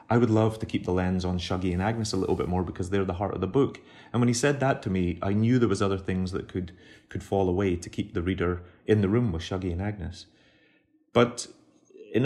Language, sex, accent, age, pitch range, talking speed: English, male, British, 30-49, 90-115 Hz, 260 wpm